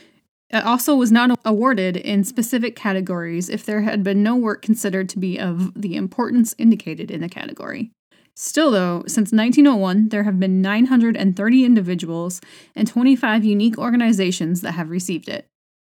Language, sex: English, female